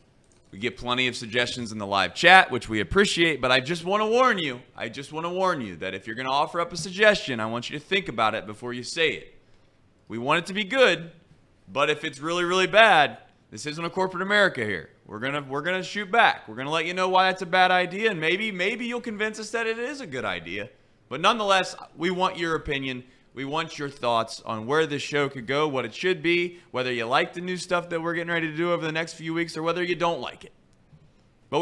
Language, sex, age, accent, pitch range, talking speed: English, male, 30-49, American, 125-185 Hz, 250 wpm